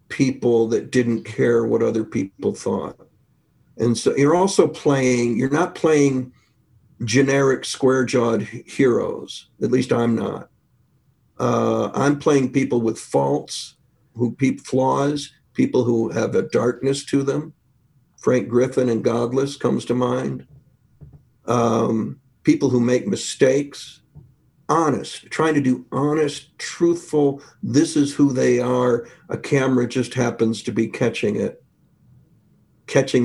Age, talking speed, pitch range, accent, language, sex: 50-69, 130 wpm, 115-140 Hz, American, English, male